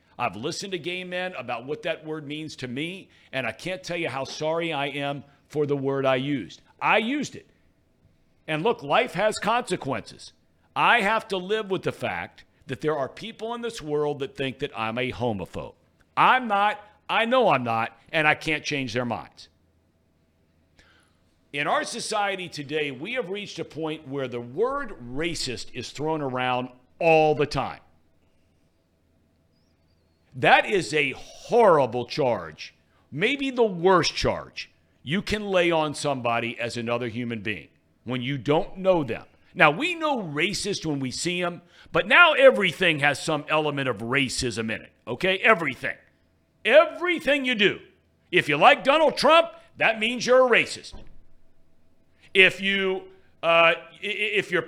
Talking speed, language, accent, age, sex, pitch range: 160 wpm, English, American, 50-69, male, 120-200 Hz